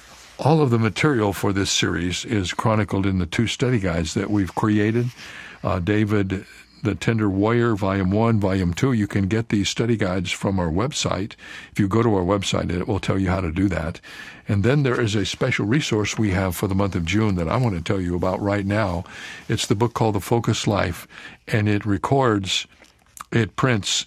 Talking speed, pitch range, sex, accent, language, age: 210 wpm, 95-115 Hz, male, American, English, 60-79